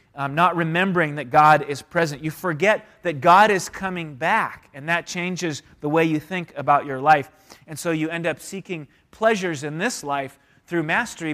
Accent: American